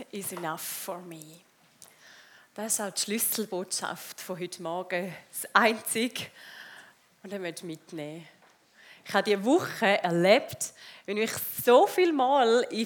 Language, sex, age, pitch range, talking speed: German, female, 30-49, 195-260 Hz, 140 wpm